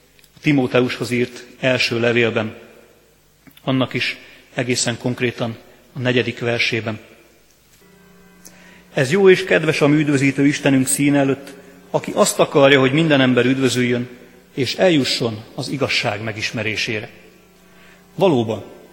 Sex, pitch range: male, 115-150 Hz